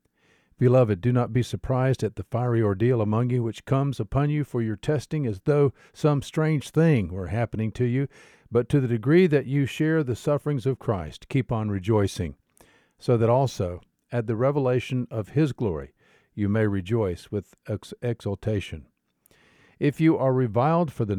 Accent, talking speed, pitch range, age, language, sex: American, 175 wpm, 105-130 Hz, 50-69, English, male